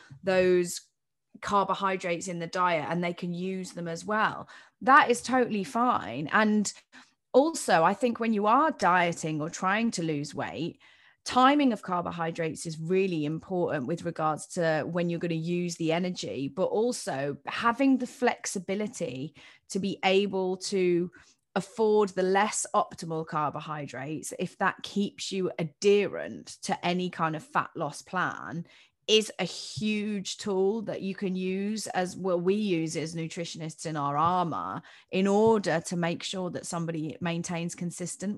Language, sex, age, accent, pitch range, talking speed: English, female, 30-49, British, 165-205 Hz, 150 wpm